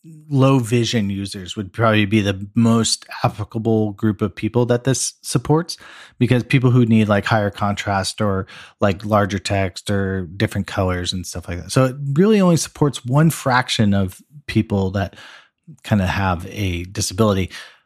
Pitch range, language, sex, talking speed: 100-125 Hz, English, male, 160 wpm